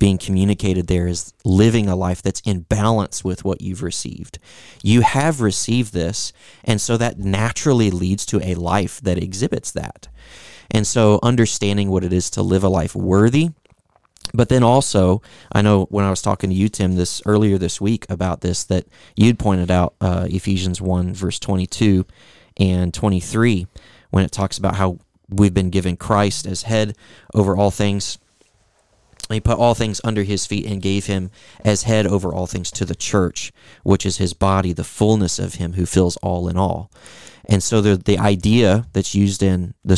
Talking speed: 185 wpm